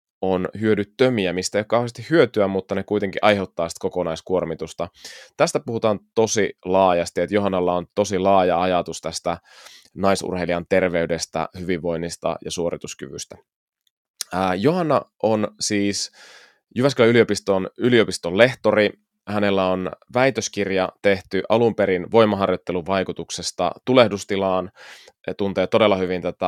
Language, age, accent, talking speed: Finnish, 20-39, native, 115 wpm